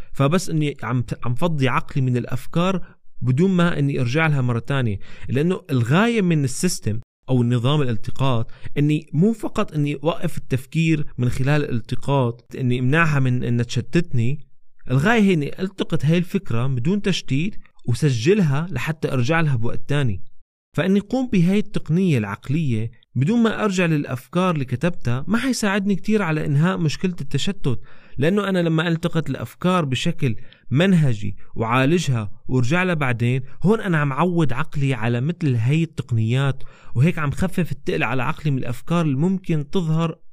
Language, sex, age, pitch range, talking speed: Arabic, male, 30-49, 125-170 Hz, 145 wpm